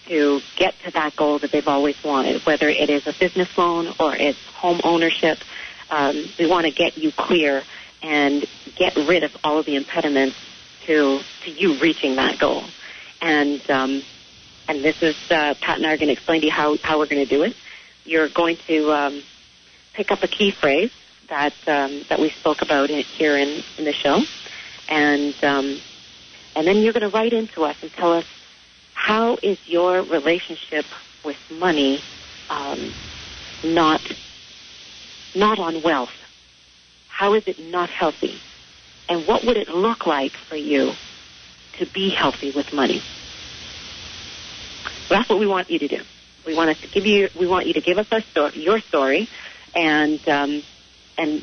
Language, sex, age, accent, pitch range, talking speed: English, female, 40-59, American, 145-175 Hz, 175 wpm